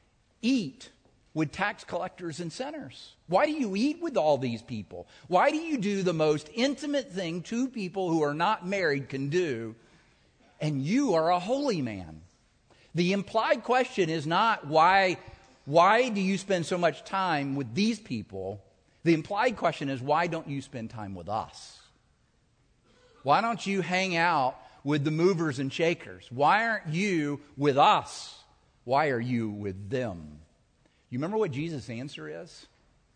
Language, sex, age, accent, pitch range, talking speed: English, male, 50-69, American, 125-185 Hz, 160 wpm